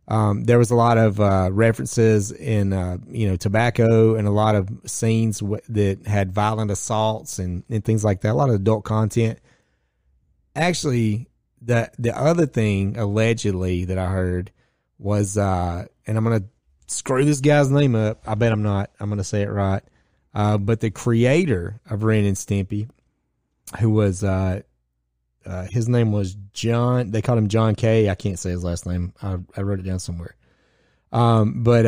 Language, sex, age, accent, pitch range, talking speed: English, male, 30-49, American, 100-120 Hz, 180 wpm